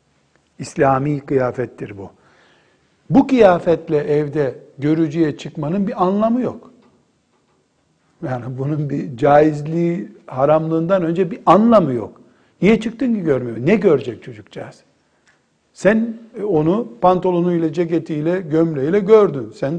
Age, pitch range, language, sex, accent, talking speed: 60-79, 145-195 Hz, Turkish, male, native, 105 wpm